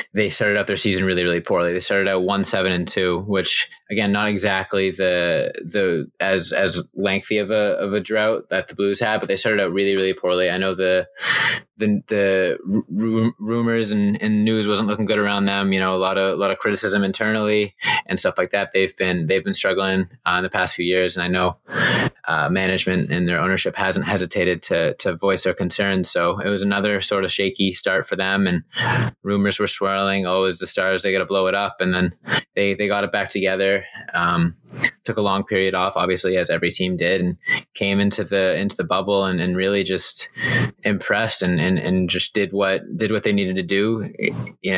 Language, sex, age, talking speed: English, male, 20-39, 215 wpm